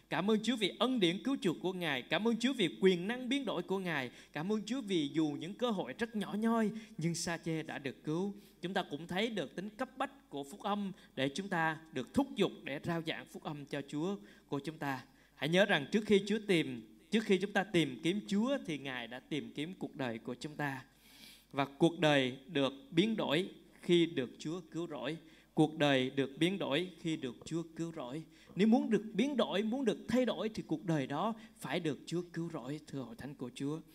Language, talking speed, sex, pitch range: Vietnamese, 235 wpm, male, 145-195 Hz